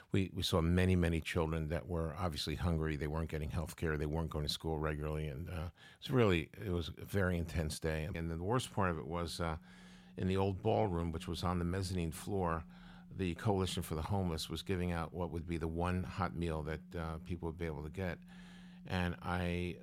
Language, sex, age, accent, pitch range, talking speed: English, male, 50-69, American, 85-95 Hz, 225 wpm